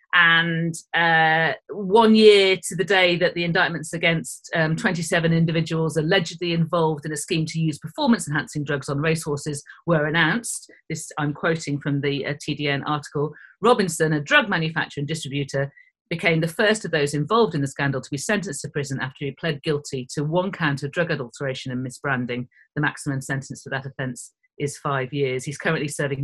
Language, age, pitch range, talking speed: English, 40-59, 145-190 Hz, 185 wpm